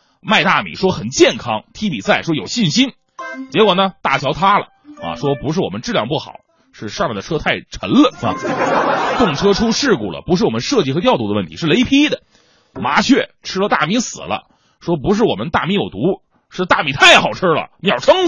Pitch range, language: 140-225 Hz, Chinese